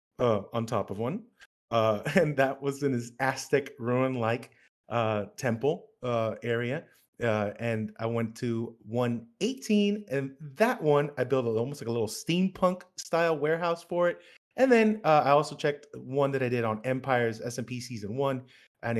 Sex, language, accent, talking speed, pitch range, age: male, English, American, 175 wpm, 110-145 Hz, 30-49